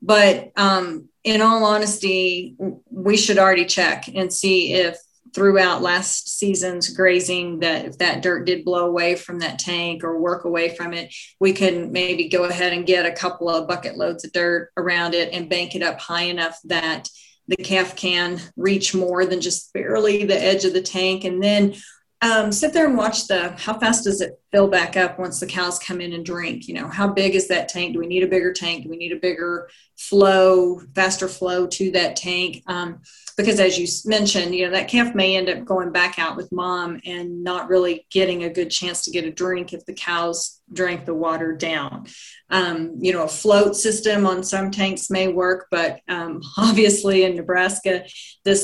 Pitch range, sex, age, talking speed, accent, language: 175-195 Hz, female, 30-49, 205 wpm, American, English